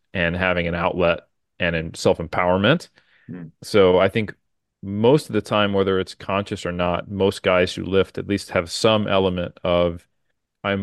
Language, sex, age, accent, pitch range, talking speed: English, male, 30-49, American, 90-100 Hz, 170 wpm